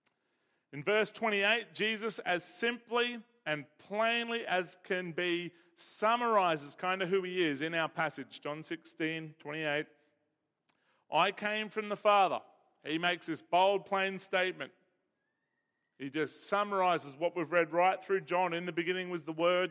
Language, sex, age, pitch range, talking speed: English, male, 40-59, 175-210 Hz, 145 wpm